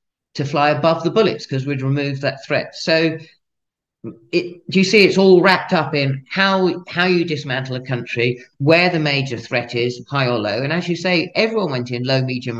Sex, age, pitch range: male, 40-59, 130-180 Hz